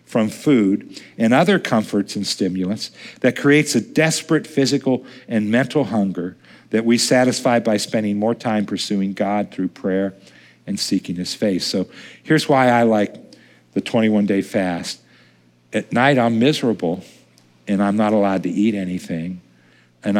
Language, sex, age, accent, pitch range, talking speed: English, male, 50-69, American, 105-145 Hz, 150 wpm